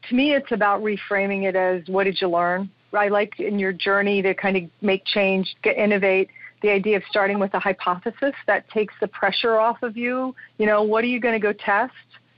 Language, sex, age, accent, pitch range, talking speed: English, female, 40-59, American, 190-225 Hz, 220 wpm